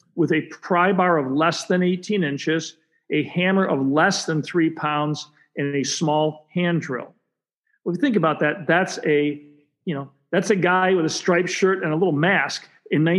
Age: 40-59